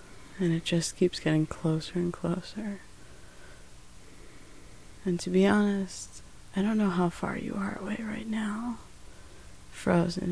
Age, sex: 30-49, female